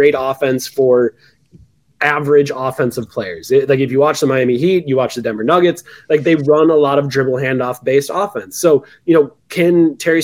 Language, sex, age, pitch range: English, male, 20-39, 135-160 Hz